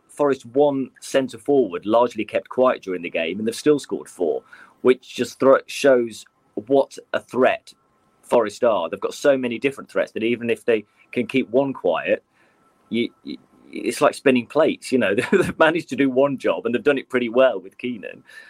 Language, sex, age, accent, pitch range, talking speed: English, male, 30-49, British, 110-130 Hz, 190 wpm